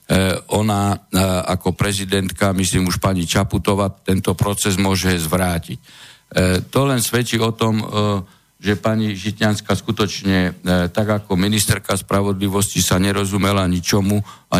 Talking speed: 115 wpm